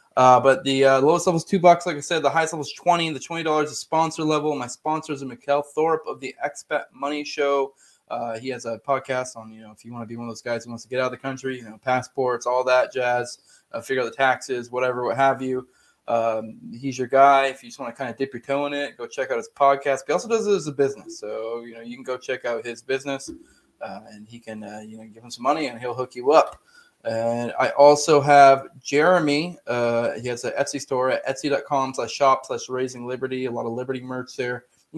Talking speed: 260 wpm